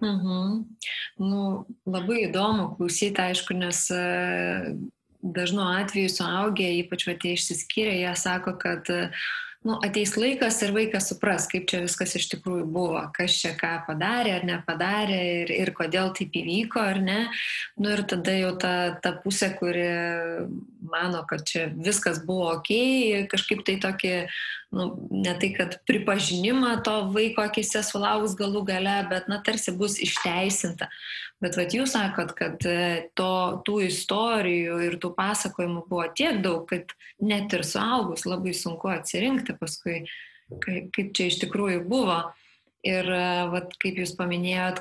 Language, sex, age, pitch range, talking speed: English, female, 20-39, 175-210 Hz, 145 wpm